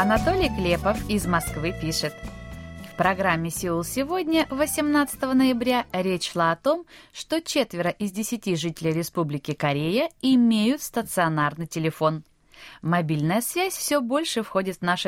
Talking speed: 125 wpm